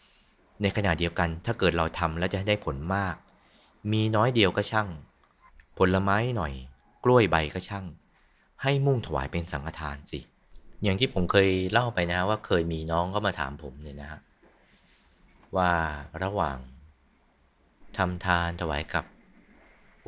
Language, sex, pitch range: Thai, male, 75-100 Hz